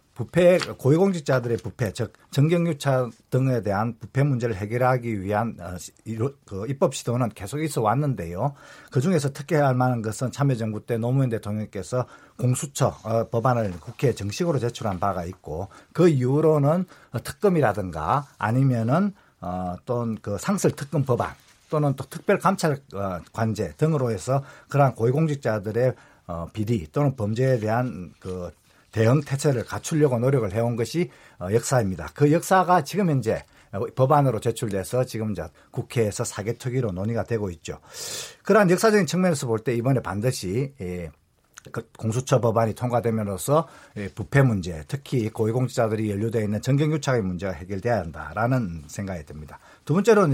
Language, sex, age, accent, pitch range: Korean, male, 50-69, native, 105-140 Hz